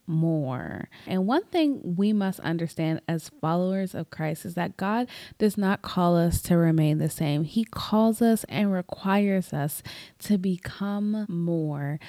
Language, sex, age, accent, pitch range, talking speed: English, female, 20-39, American, 170-215 Hz, 155 wpm